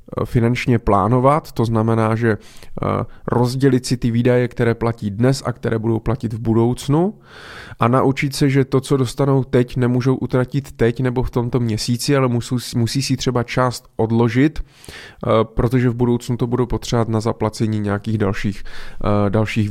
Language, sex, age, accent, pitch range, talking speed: Czech, male, 20-39, native, 110-130 Hz, 155 wpm